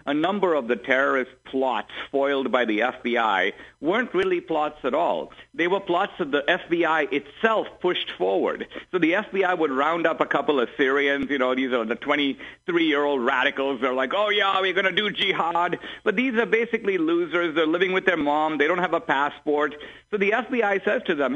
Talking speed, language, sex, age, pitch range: 200 wpm, English, male, 50-69, 160-230 Hz